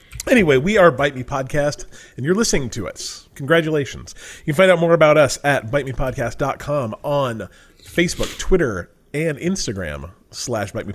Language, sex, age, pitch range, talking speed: English, male, 30-49, 110-155 Hz, 160 wpm